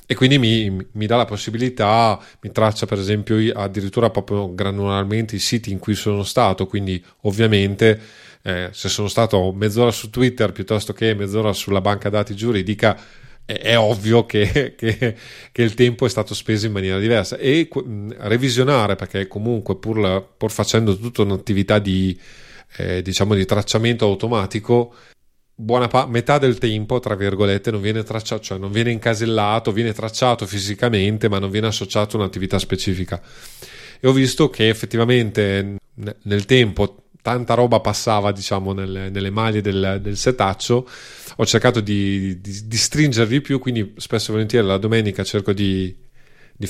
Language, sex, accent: Italian, male, native